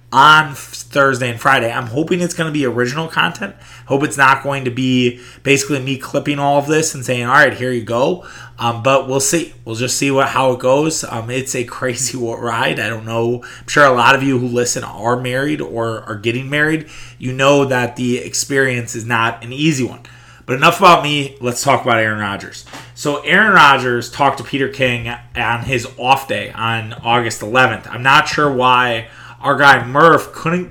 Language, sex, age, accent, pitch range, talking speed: English, male, 20-39, American, 120-145 Hz, 205 wpm